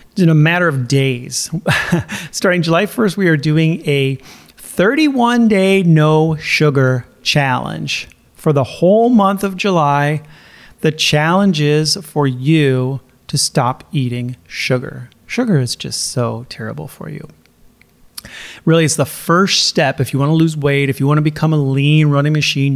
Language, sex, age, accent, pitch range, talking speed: English, male, 30-49, American, 130-170 Hz, 155 wpm